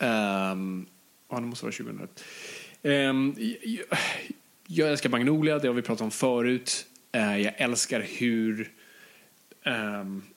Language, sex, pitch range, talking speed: Swedish, male, 110-145 Hz, 120 wpm